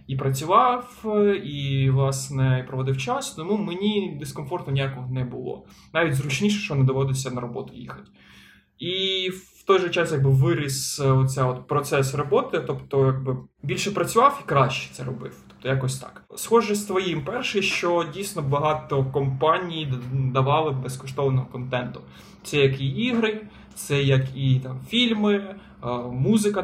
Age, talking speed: 20-39, 140 wpm